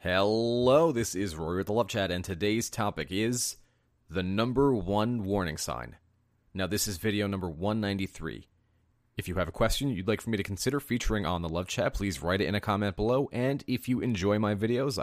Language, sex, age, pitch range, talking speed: English, male, 30-49, 90-110 Hz, 210 wpm